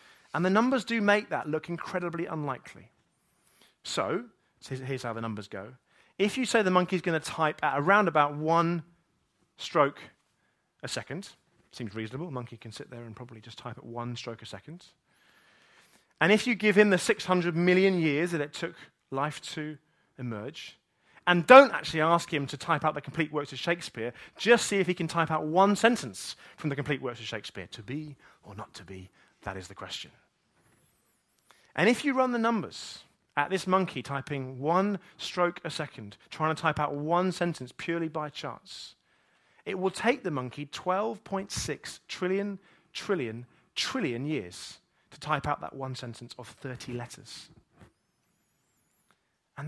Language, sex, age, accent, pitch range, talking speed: English, male, 30-49, British, 130-185 Hz, 175 wpm